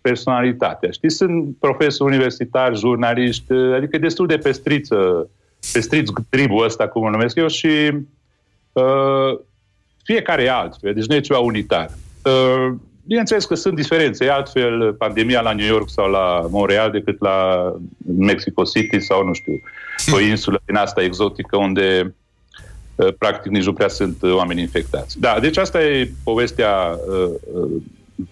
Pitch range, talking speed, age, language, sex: 105-140 Hz, 150 wpm, 40-59, Romanian, male